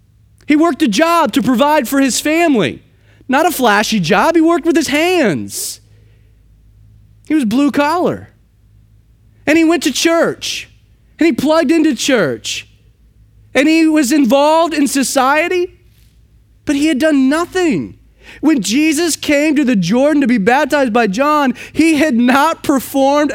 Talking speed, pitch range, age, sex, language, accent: 150 wpm, 175-285 Hz, 30-49, male, English, American